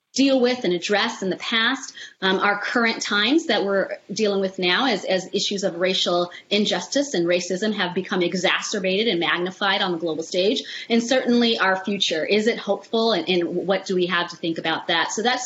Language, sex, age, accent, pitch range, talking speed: English, female, 30-49, American, 185-240 Hz, 200 wpm